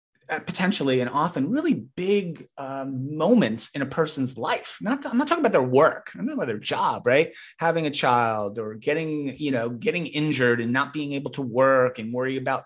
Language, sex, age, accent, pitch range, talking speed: English, male, 30-49, American, 125-165 Hz, 210 wpm